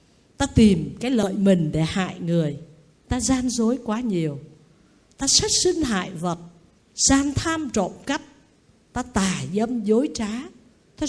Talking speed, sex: 150 wpm, female